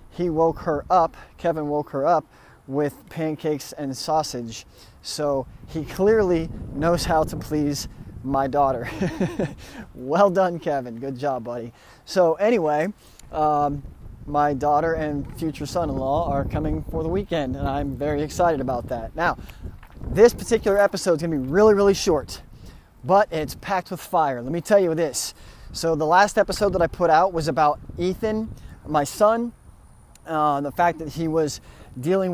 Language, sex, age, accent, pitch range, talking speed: English, male, 30-49, American, 145-175 Hz, 160 wpm